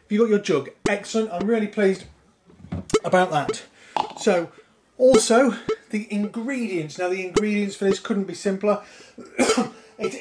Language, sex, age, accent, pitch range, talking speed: English, male, 30-49, British, 190-230 Hz, 135 wpm